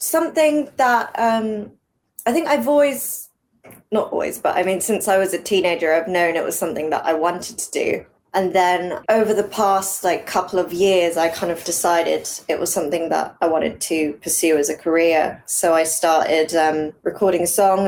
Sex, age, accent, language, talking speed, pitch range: female, 20-39, British, English, 190 wpm, 160-190 Hz